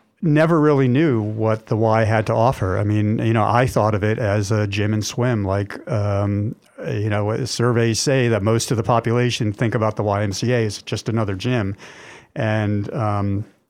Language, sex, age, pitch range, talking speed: English, male, 50-69, 105-125 Hz, 190 wpm